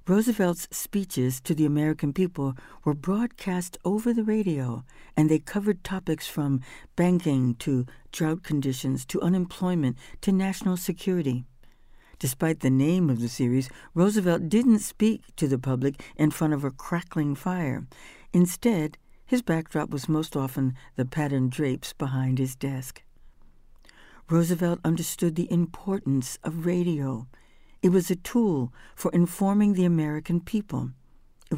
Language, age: English, 60-79